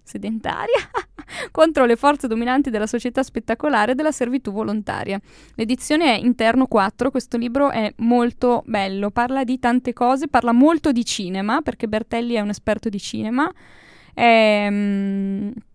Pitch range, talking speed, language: 210-250 Hz, 140 wpm, Italian